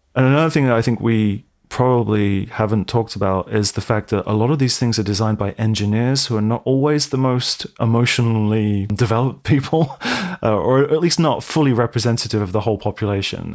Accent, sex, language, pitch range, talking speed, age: British, male, English, 100-120 Hz, 195 wpm, 30-49